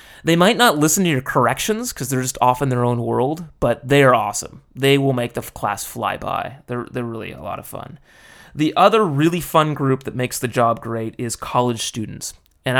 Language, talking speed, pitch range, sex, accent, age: English, 220 wpm, 115-140 Hz, male, American, 30-49